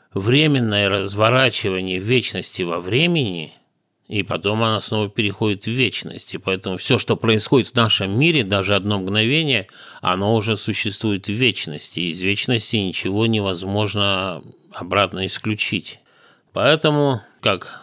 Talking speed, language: 120 wpm, Russian